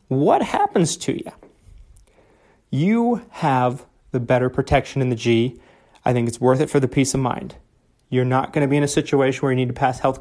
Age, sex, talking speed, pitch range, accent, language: 30-49, male, 210 wpm, 125-155 Hz, American, English